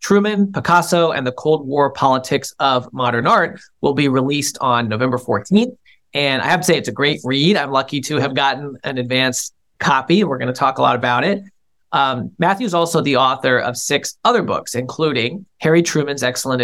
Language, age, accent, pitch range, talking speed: English, 40-59, American, 125-160 Hz, 195 wpm